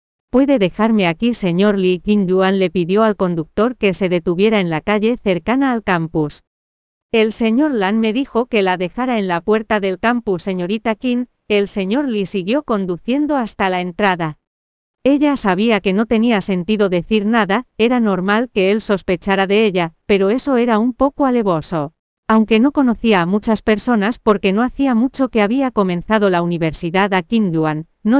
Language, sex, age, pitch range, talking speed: Spanish, female, 40-59, 185-230 Hz, 175 wpm